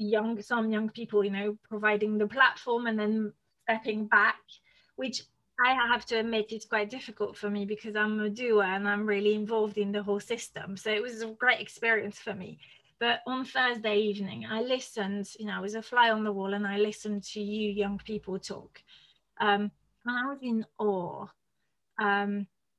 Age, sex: 20-39, female